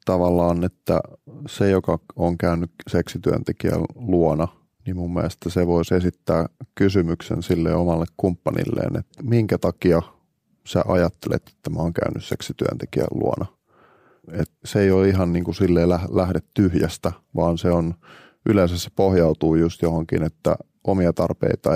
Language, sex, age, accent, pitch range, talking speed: Finnish, male, 30-49, native, 85-95 Hz, 130 wpm